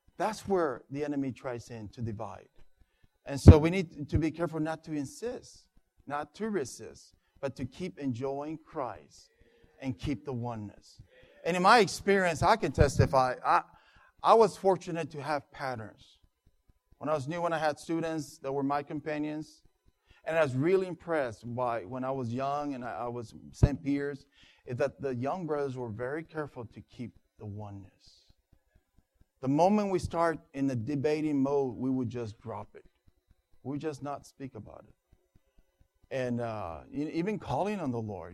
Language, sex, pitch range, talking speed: English, male, 120-160 Hz, 170 wpm